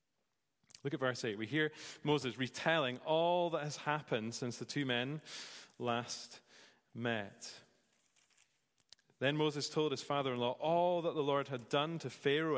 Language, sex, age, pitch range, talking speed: English, male, 30-49, 130-170 Hz, 150 wpm